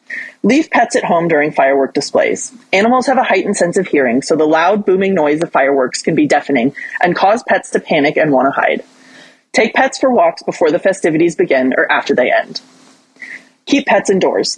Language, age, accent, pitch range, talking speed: English, 30-49, American, 155-250 Hz, 200 wpm